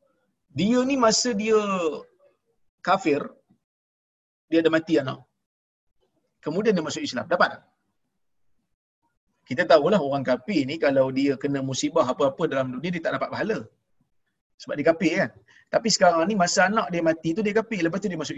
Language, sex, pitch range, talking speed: Malayalam, male, 150-220 Hz, 160 wpm